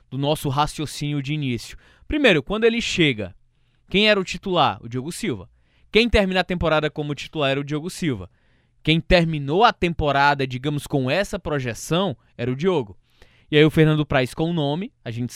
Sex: male